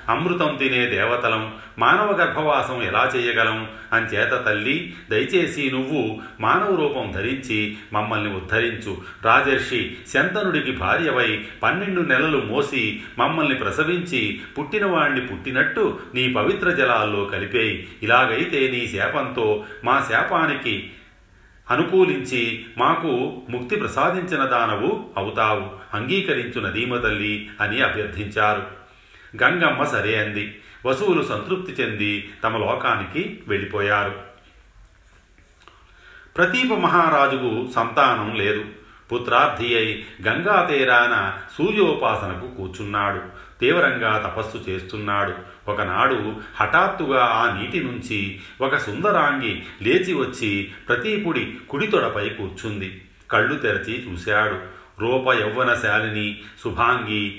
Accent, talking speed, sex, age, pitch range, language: native, 90 wpm, male, 40-59, 100-125 Hz, Telugu